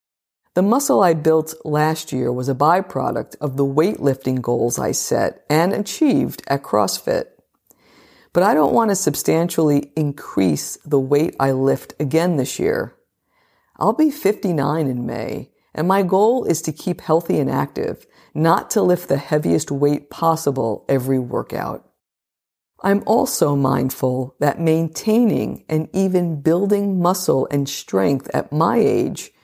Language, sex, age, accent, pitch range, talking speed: English, female, 50-69, American, 140-190 Hz, 145 wpm